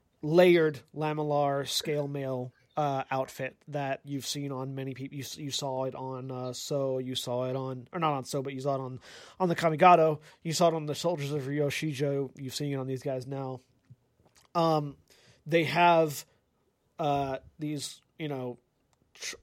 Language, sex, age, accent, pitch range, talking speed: English, male, 30-49, American, 135-160 Hz, 180 wpm